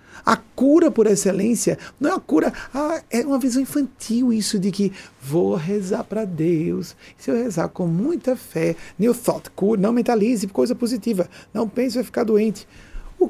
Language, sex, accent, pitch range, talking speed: Portuguese, male, Brazilian, 160-235 Hz, 170 wpm